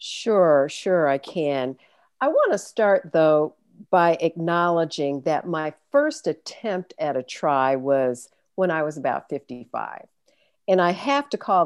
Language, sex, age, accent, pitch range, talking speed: English, female, 50-69, American, 145-190 Hz, 145 wpm